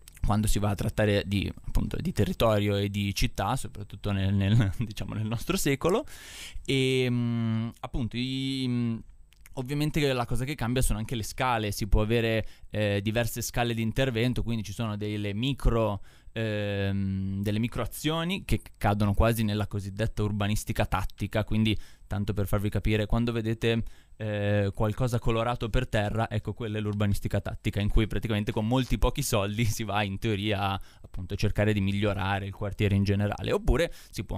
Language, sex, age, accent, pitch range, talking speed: Italian, male, 20-39, native, 100-115 Hz, 160 wpm